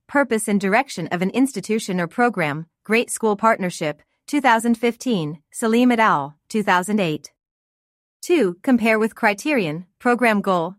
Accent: American